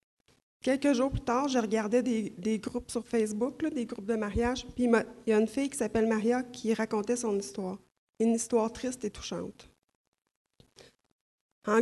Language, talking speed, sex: French, 190 wpm, female